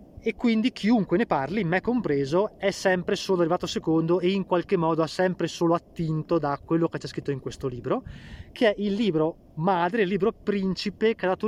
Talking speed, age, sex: 205 wpm, 20-39, male